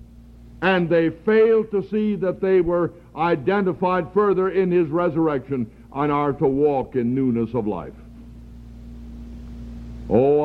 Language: English